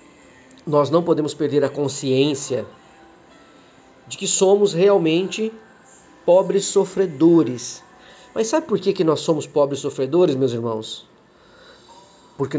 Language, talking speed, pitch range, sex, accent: Portuguese, 110 wpm, 135-190 Hz, male, Brazilian